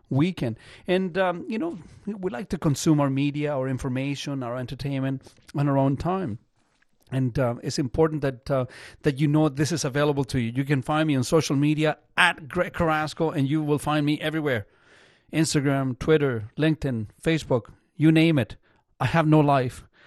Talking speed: 180 wpm